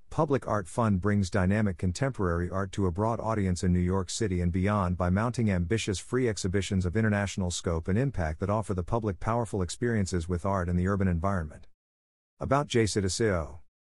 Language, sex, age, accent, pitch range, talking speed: English, male, 50-69, American, 90-115 Hz, 180 wpm